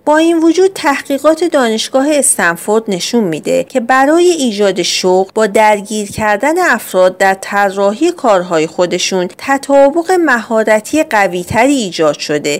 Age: 40-59